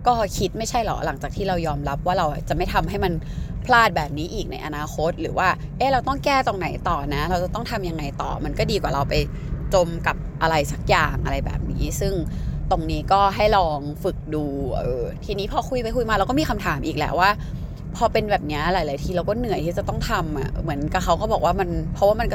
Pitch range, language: 150-190 Hz, Thai